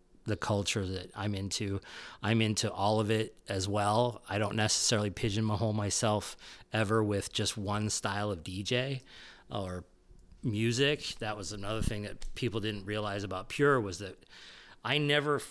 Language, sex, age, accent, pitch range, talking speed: English, male, 30-49, American, 105-125 Hz, 155 wpm